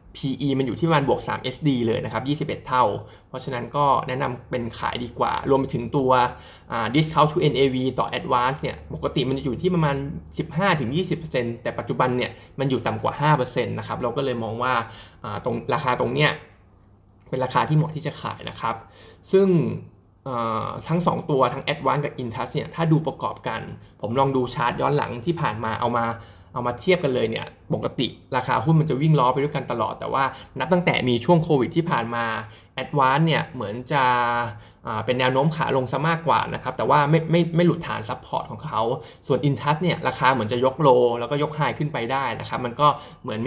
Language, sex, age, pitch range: Thai, male, 20-39, 120-150 Hz